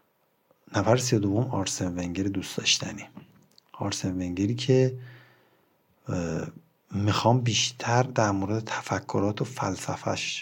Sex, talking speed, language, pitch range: male, 90 wpm, Persian, 95-120 Hz